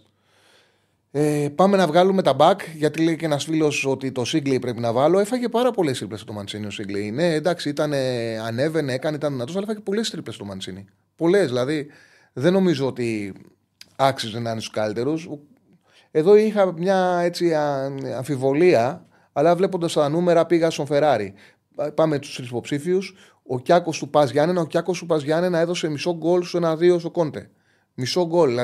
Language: Greek